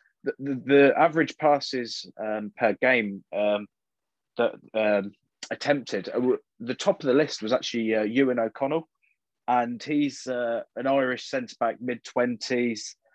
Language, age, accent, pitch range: English, 20-39, British, 110-130 Hz